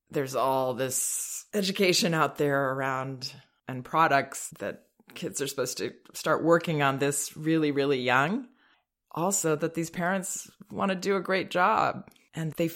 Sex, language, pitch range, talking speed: female, English, 120-155 Hz, 155 wpm